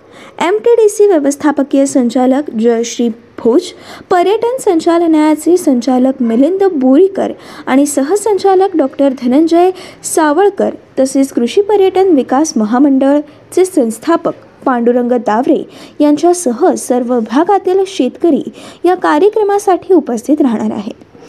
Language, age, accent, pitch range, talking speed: Marathi, 20-39, native, 265-365 Hz, 95 wpm